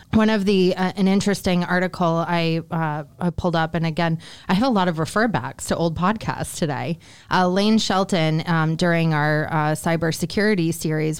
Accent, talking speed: American, 180 wpm